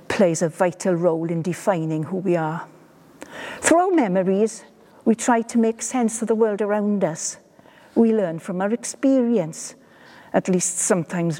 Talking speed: 160 wpm